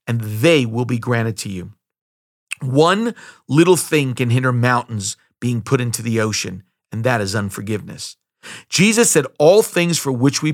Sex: male